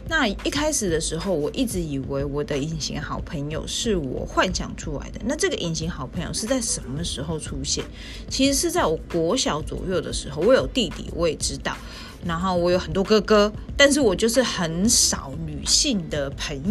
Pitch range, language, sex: 160-250 Hz, Chinese, female